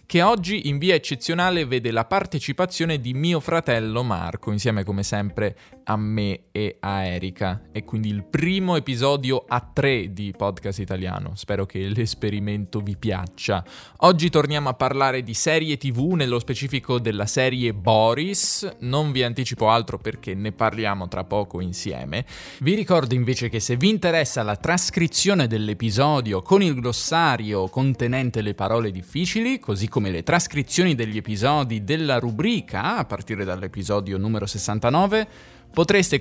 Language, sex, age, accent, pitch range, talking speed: Italian, male, 20-39, native, 105-150 Hz, 145 wpm